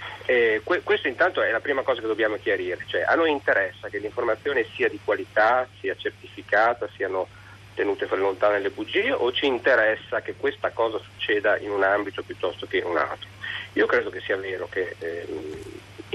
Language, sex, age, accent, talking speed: Italian, male, 40-59, native, 180 wpm